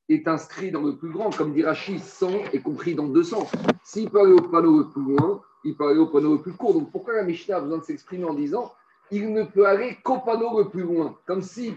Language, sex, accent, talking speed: French, male, French, 270 wpm